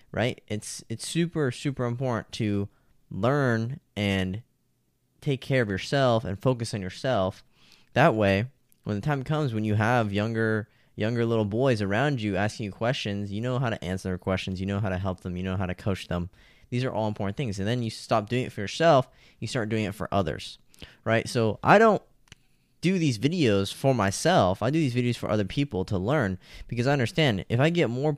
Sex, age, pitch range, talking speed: male, 10-29, 100-125 Hz, 210 wpm